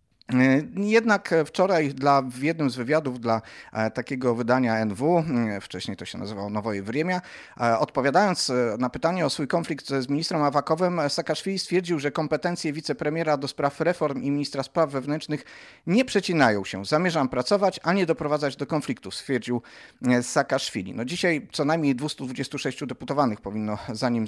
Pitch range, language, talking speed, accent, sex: 125-160 Hz, Polish, 145 wpm, native, male